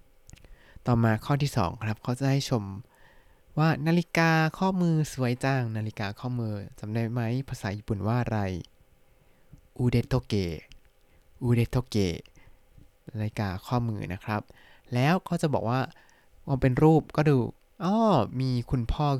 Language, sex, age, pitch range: Thai, male, 20-39, 110-140 Hz